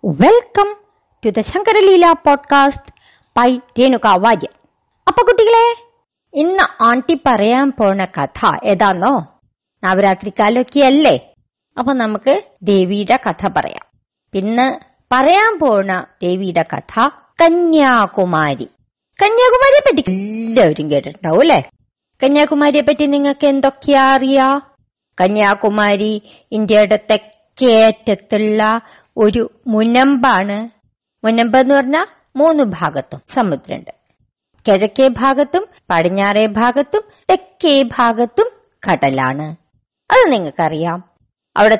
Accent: native